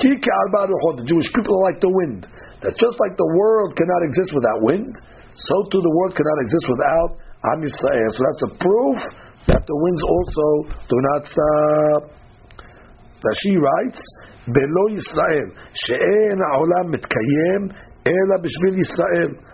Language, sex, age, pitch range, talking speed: English, male, 60-79, 130-185 Hz, 140 wpm